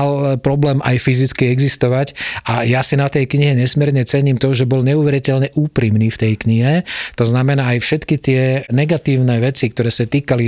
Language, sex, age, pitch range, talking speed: Slovak, male, 40-59, 120-140 Hz, 170 wpm